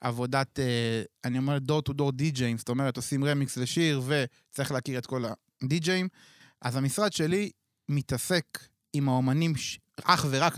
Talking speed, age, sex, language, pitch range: 140 wpm, 20-39, male, Hebrew, 125-150 Hz